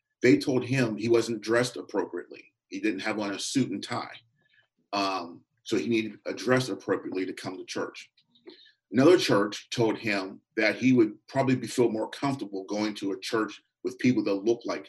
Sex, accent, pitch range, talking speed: male, American, 110-135 Hz, 190 wpm